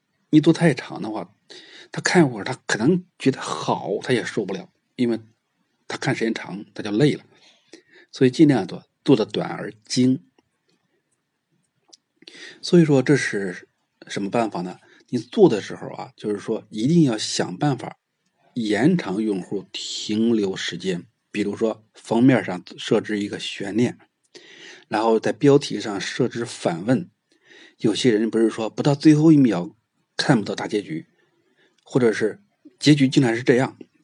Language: Chinese